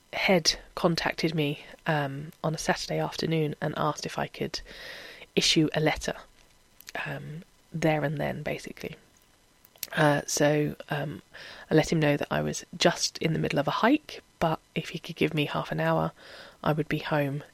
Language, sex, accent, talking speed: English, female, British, 175 wpm